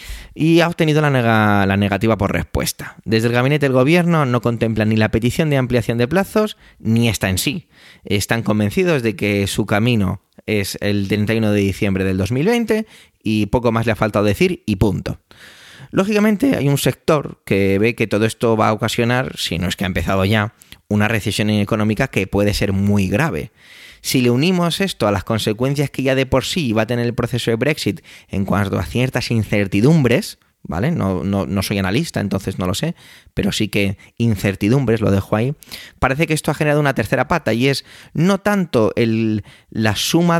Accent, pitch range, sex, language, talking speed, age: Spanish, 105-135 Hz, male, Spanish, 195 wpm, 20-39